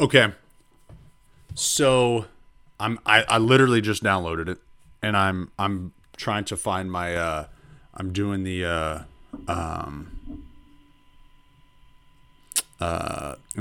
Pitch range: 90-130 Hz